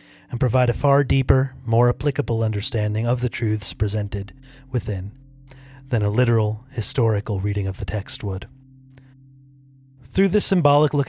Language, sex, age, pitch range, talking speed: English, male, 30-49, 105-135 Hz, 140 wpm